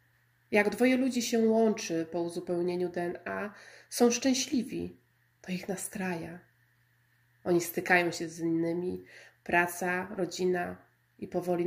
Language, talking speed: Polish, 115 wpm